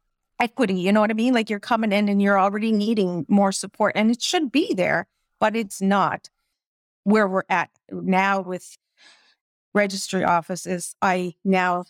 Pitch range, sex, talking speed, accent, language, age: 180-215 Hz, female, 165 wpm, American, English, 40-59